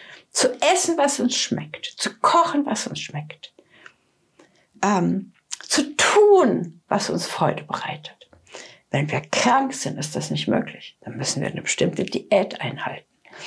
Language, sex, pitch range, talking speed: English, female, 195-300 Hz, 145 wpm